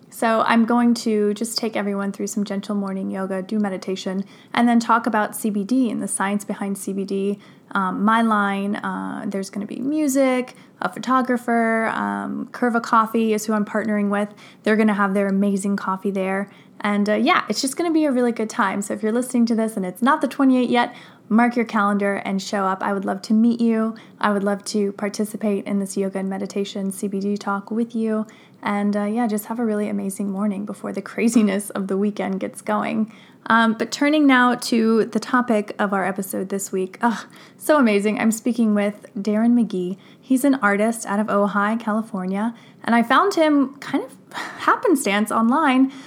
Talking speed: 200 wpm